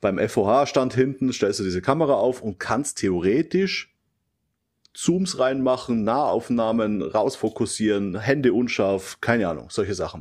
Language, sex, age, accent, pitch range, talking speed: German, male, 30-49, German, 110-135 Hz, 125 wpm